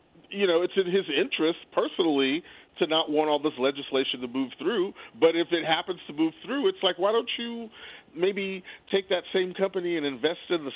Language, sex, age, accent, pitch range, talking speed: English, male, 40-59, American, 125-175 Hz, 205 wpm